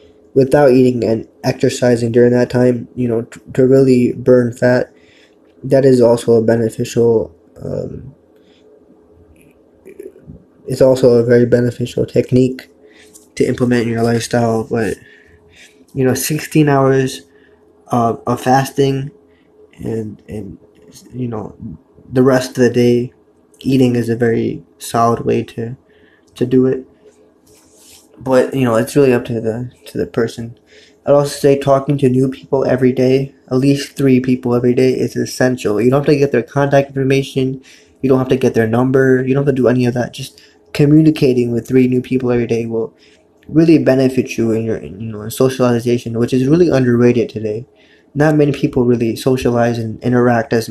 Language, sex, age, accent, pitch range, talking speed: English, male, 20-39, American, 115-135 Hz, 165 wpm